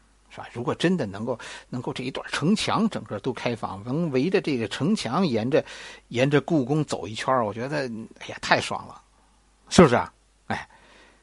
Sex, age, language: male, 50-69, Chinese